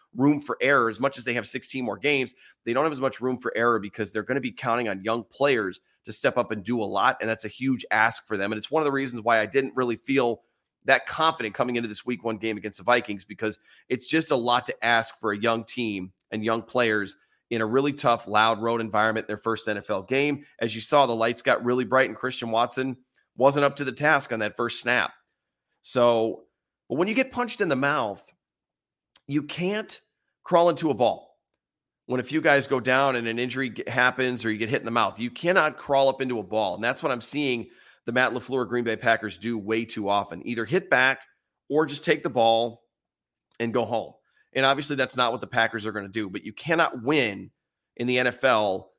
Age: 30-49